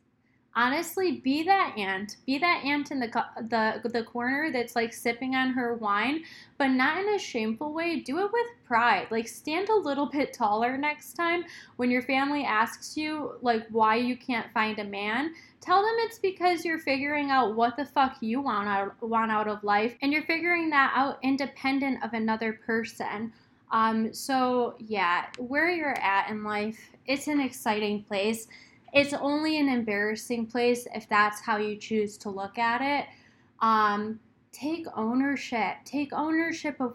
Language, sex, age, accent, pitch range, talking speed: English, female, 10-29, American, 215-280 Hz, 175 wpm